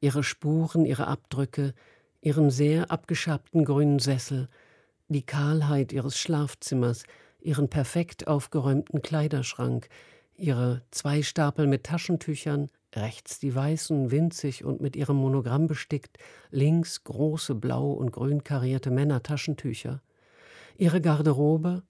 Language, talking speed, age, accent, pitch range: German, 110 wpm, 50-69, German, 130-155 Hz